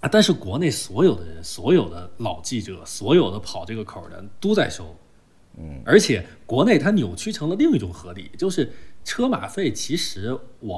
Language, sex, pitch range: Chinese, male, 95-145 Hz